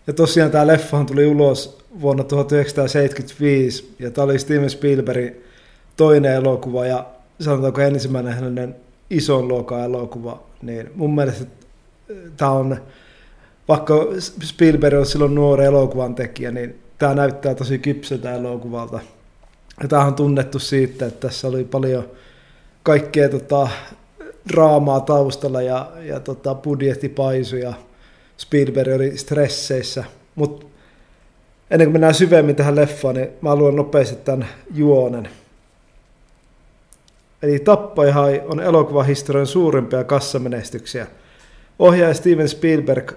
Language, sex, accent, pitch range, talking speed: Finnish, male, native, 125-145 Hz, 110 wpm